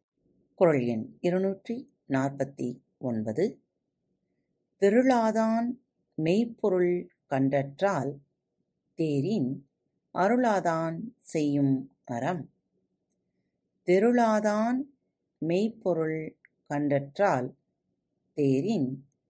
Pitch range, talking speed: 135-200 Hz, 45 wpm